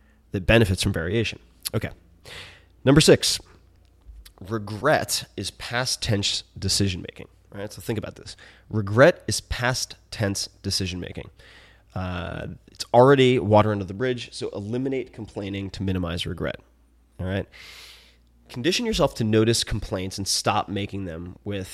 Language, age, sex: English, 20-39, male